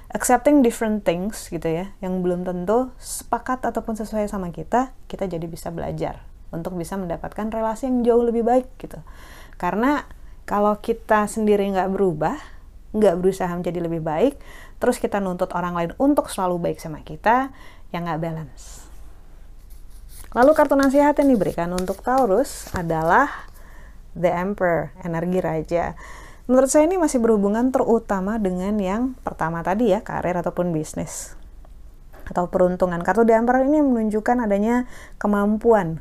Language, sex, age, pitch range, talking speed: Indonesian, female, 30-49, 175-230 Hz, 140 wpm